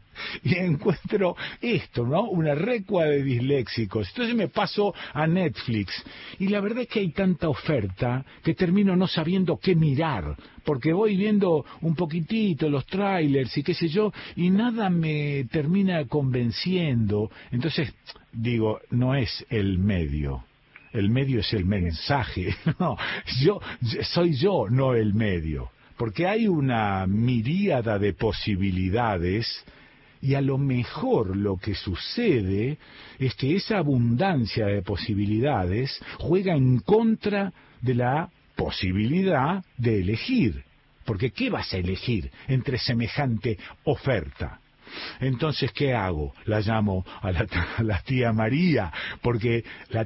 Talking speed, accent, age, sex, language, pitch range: 130 wpm, Argentinian, 50-69, male, Spanish, 110-165 Hz